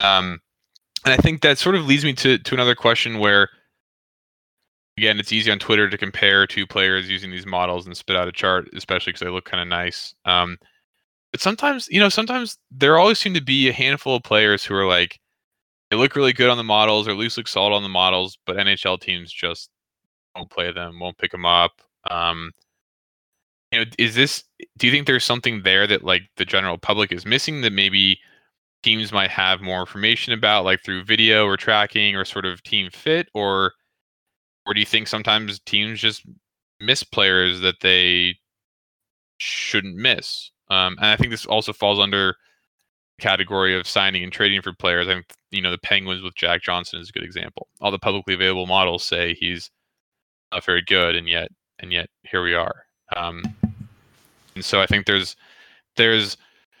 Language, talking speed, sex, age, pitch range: English, 195 wpm, male, 20-39, 90-110 Hz